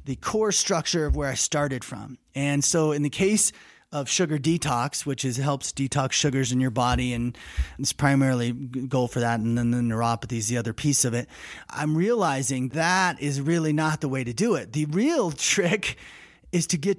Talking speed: 200 wpm